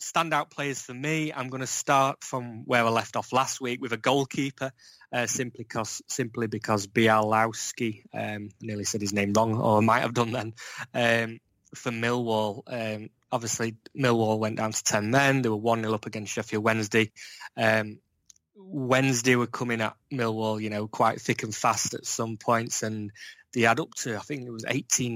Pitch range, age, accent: 110-130 Hz, 20-39, British